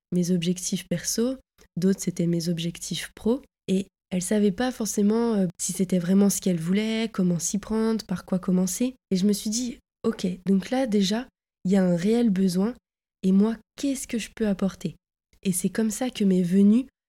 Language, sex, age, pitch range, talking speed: French, female, 20-39, 185-230 Hz, 195 wpm